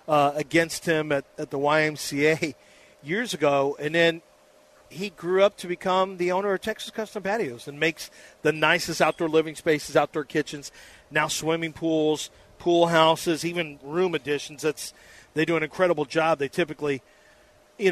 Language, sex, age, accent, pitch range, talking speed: English, male, 40-59, American, 155-180 Hz, 155 wpm